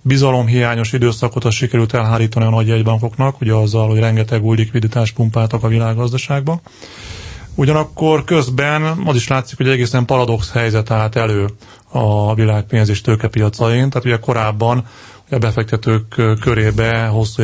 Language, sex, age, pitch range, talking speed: Hungarian, male, 30-49, 115-135 Hz, 135 wpm